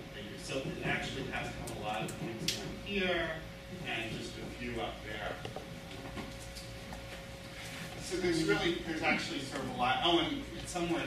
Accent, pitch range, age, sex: American, 120-170 Hz, 30-49, male